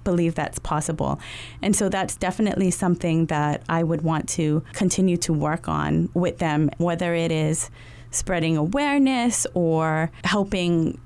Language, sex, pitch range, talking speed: English, female, 160-195 Hz, 140 wpm